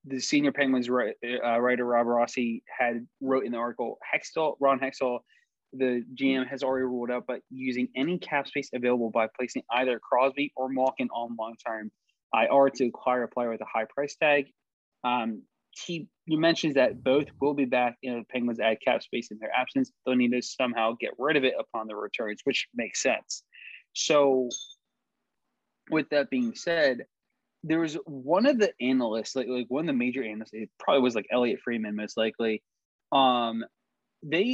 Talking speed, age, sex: 190 wpm, 20-39, male